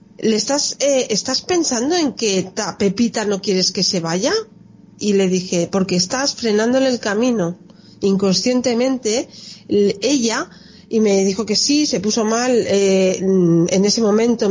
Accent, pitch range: Spanish, 195-250 Hz